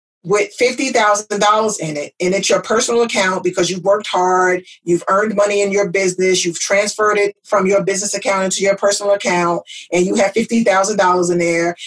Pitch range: 180-220 Hz